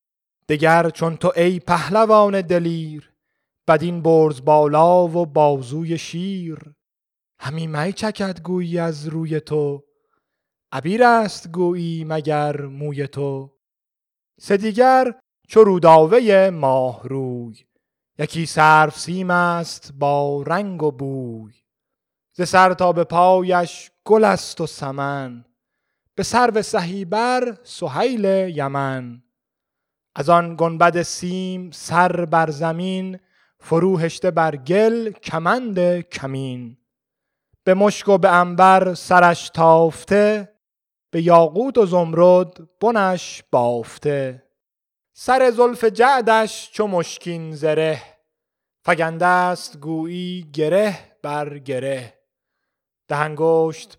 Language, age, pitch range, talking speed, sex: Persian, 30-49, 150-185 Hz, 100 wpm, male